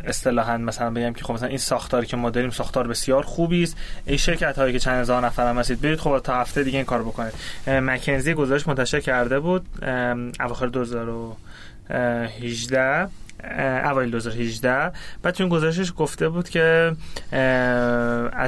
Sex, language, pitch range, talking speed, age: male, Persian, 125-145 Hz, 145 wpm, 20-39